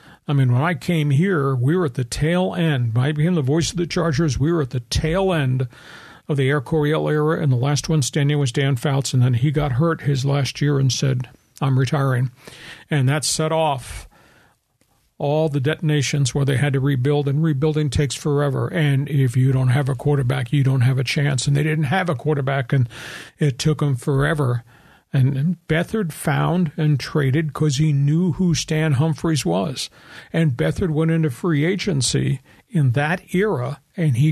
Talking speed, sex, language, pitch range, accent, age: 200 wpm, male, English, 135-160 Hz, American, 50-69